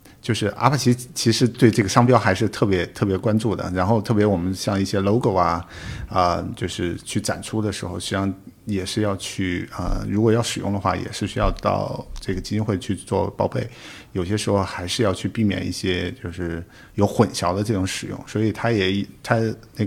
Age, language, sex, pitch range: 50-69, Chinese, male, 90-115 Hz